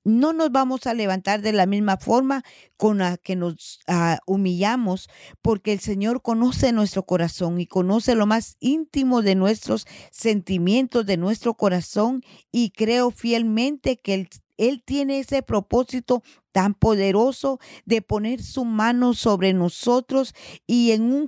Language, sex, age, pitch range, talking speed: Spanish, female, 40-59, 190-240 Hz, 145 wpm